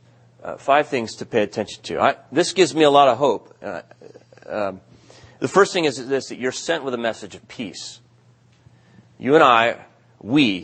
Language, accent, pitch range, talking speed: English, American, 120-160 Hz, 190 wpm